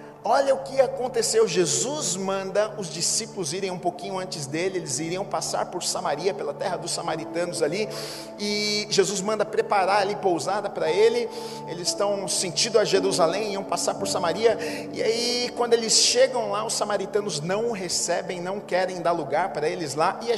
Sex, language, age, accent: male, Portuguese, 40-59, Brazilian